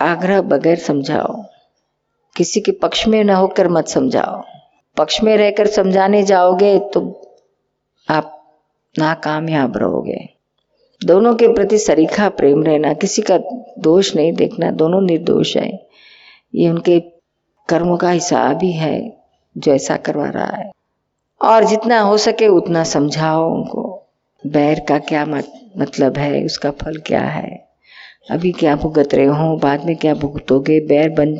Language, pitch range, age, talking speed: Gujarati, 150-190 Hz, 50-69, 140 wpm